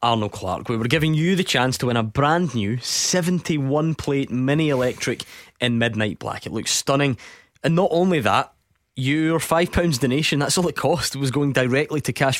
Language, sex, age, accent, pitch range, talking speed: English, male, 20-39, British, 115-145 Hz, 190 wpm